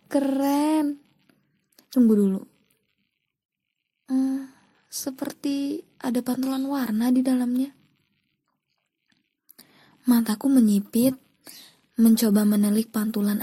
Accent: native